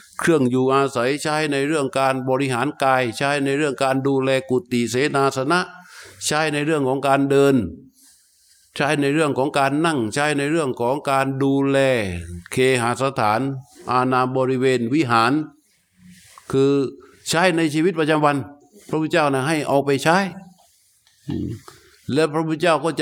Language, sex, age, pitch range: Thai, male, 60-79, 125-145 Hz